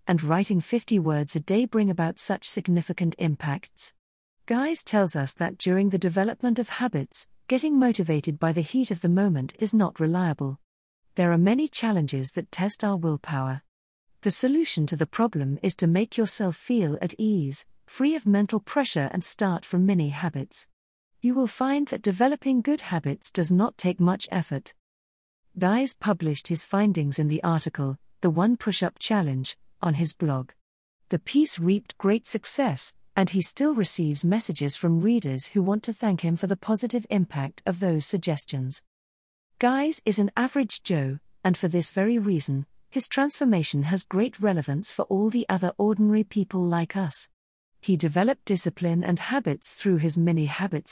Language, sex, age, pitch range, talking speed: English, female, 40-59, 155-215 Hz, 165 wpm